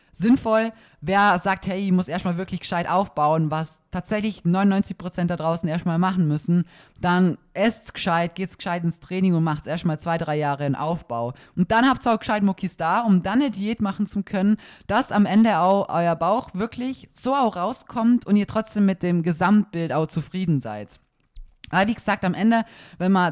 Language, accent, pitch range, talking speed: German, German, 170-205 Hz, 190 wpm